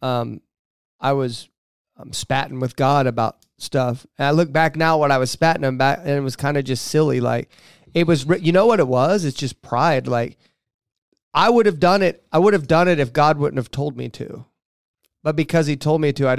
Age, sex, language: 30-49, male, English